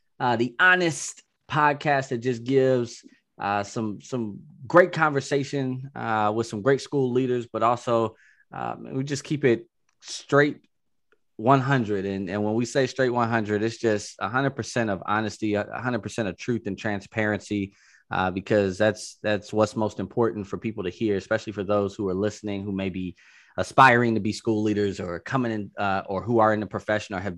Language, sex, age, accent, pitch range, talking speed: English, male, 20-39, American, 100-125 Hz, 180 wpm